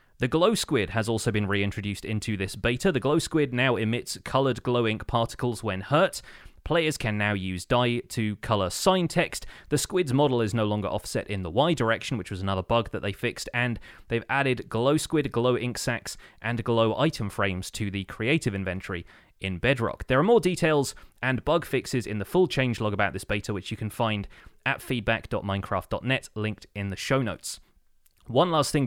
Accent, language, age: British, English, 30-49